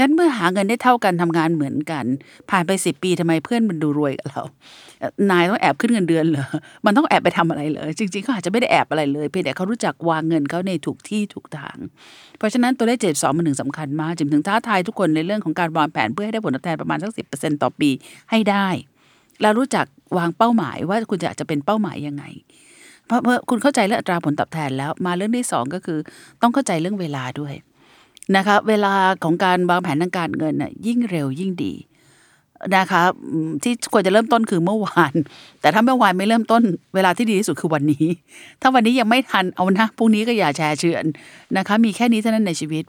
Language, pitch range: Thai, 155-215 Hz